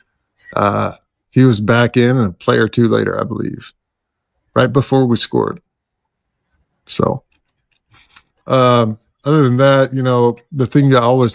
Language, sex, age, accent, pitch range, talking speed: English, male, 40-59, American, 115-145 Hz, 150 wpm